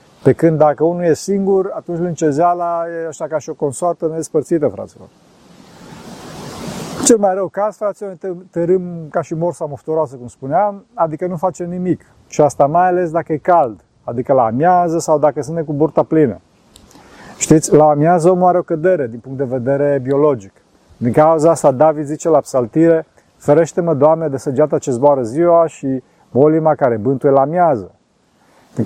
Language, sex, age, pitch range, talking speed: Romanian, male, 40-59, 140-175 Hz, 165 wpm